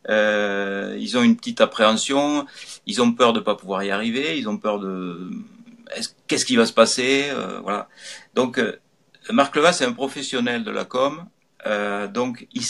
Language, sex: French, male